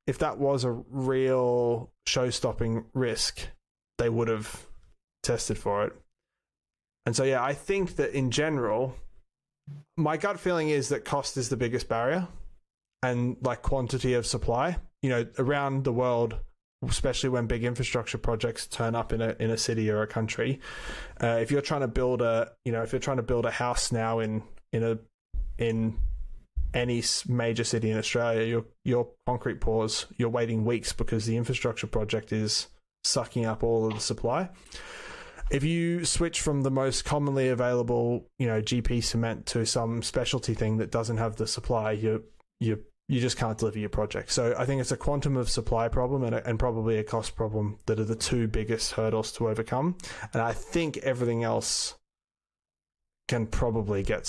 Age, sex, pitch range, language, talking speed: 20-39, male, 115-130 Hz, English, 180 wpm